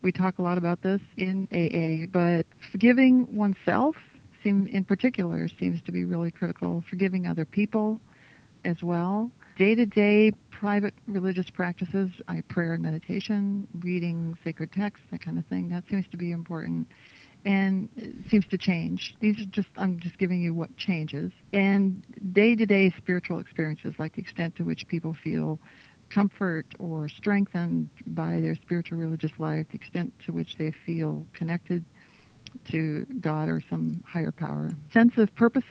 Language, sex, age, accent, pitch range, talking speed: English, female, 60-79, American, 160-200 Hz, 160 wpm